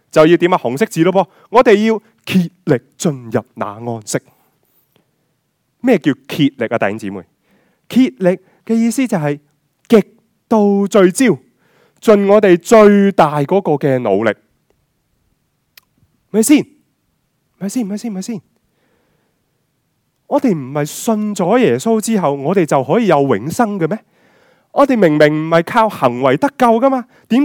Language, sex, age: Chinese, male, 20-39